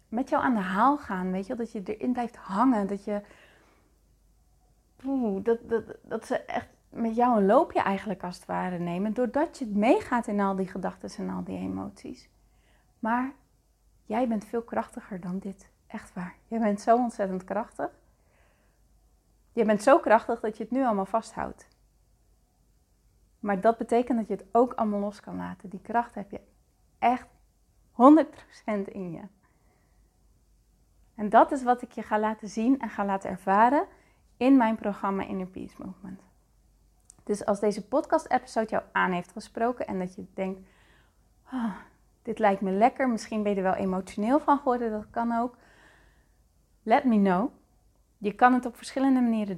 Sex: female